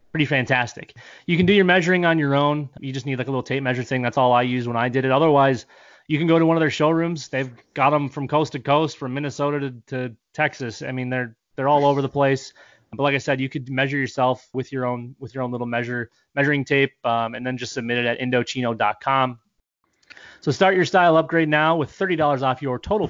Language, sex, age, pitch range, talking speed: English, male, 20-39, 125-150 Hz, 240 wpm